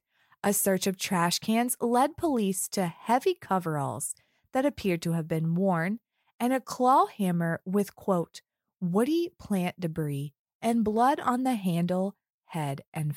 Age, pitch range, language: 20-39, 175-250 Hz, English